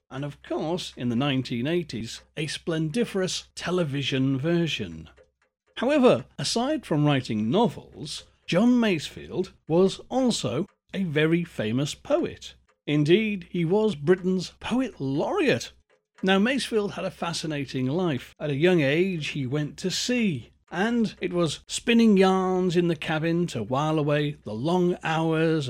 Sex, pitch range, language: male, 135-185 Hz, English